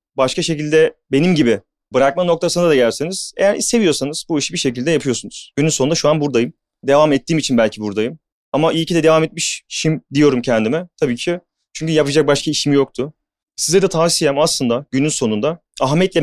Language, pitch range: Turkish, 145-195 Hz